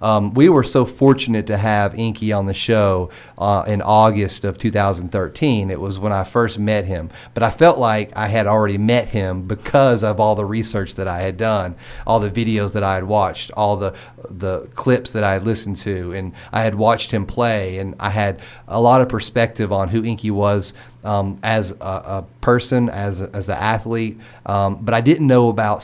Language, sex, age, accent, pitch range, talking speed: English, male, 30-49, American, 100-120 Hz, 210 wpm